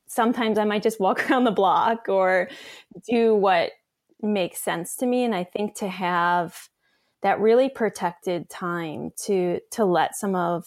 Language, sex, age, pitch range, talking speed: English, female, 20-39, 185-230 Hz, 165 wpm